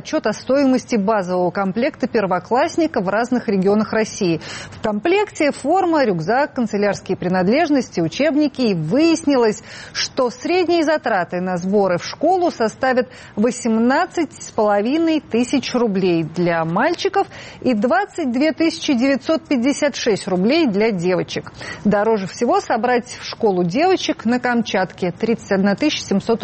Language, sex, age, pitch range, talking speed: Russian, female, 30-49, 205-285 Hz, 110 wpm